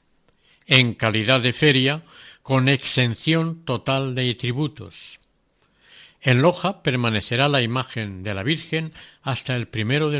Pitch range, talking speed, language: 115-150 Hz, 125 wpm, Spanish